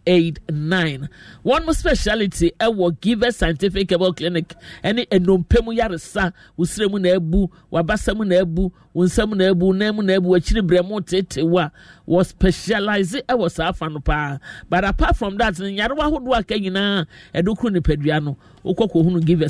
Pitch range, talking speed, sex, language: 155-200 Hz, 140 wpm, male, English